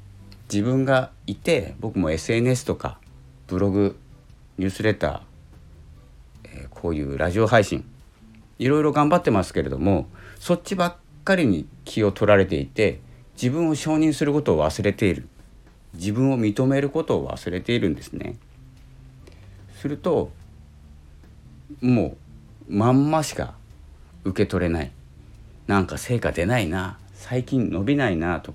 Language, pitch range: Japanese, 80-125 Hz